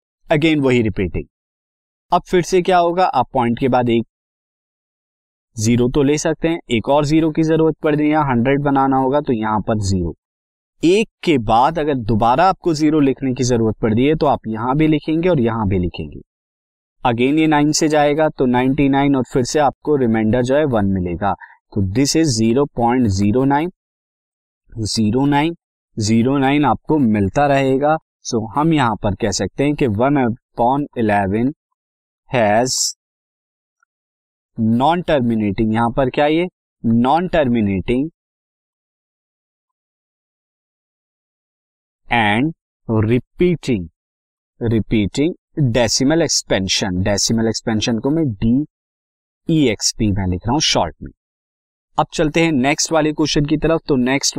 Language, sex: Hindi, male